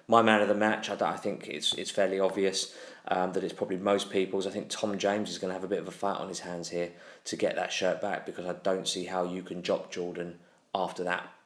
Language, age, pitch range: English, 20-39, 90-105 Hz